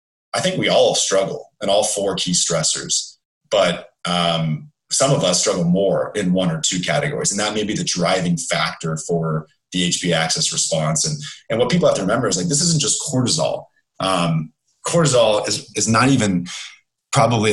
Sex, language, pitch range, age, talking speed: male, English, 85-125 Hz, 30-49, 185 wpm